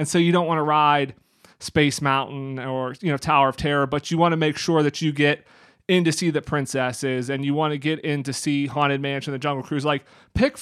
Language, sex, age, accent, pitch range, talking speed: English, male, 30-49, American, 145-175 Hz, 240 wpm